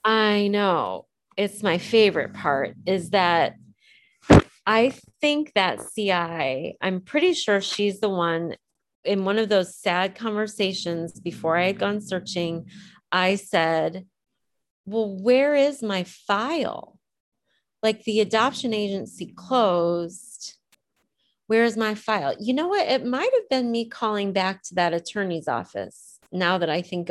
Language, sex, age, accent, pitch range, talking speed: English, female, 30-49, American, 175-220 Hz, 135 wpm